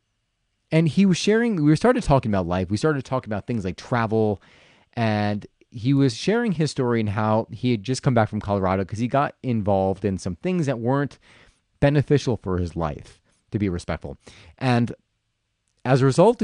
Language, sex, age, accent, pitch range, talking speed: English, male, 30-49, American, 100-135 Hz, 185 wpm